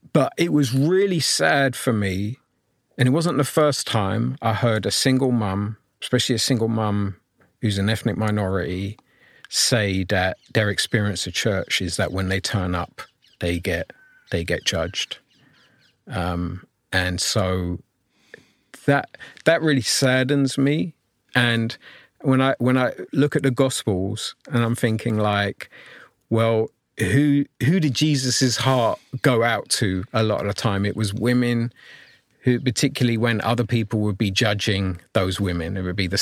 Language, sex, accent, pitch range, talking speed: English, male, British, 95-125 Hz, 155 wpm